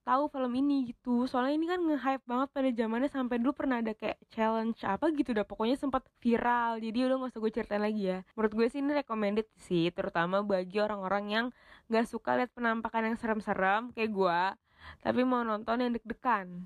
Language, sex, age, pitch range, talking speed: Indonesian, female, 20-39, 200-240 Hz, 195 wpm